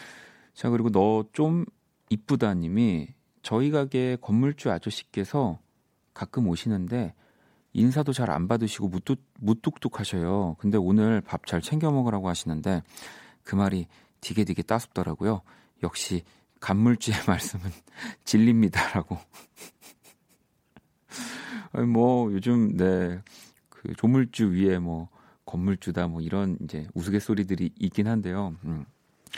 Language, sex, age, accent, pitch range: Korean, male, 40-59, native, 90-125 Hz